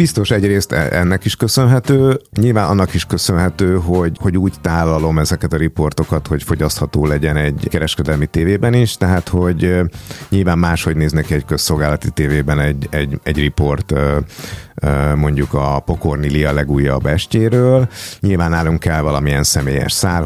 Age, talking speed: 50-69, 140 wpm